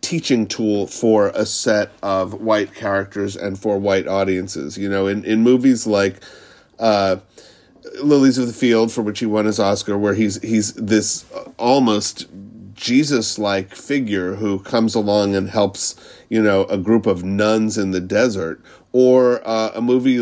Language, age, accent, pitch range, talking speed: English, 40-59, American, 100-115 Hz, 160 wpm